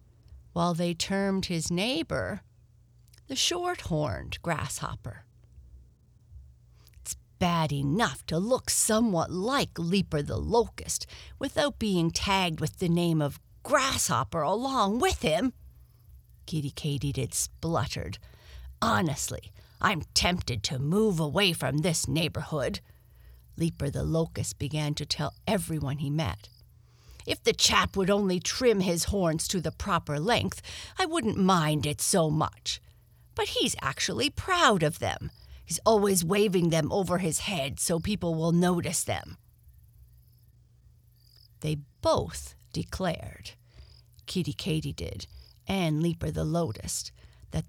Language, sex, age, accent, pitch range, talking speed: English, female, 50-69, American, 120-190 Hz, 120 wpm